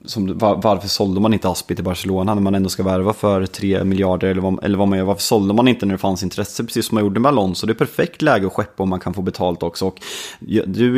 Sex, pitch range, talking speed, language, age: male, 95-110 Hz, 280 wpm, Swedish, 20-39